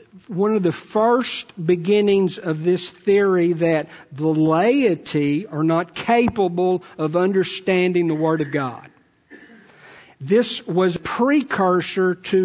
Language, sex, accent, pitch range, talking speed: English, male, American, 165-200 Hz, 115 wpm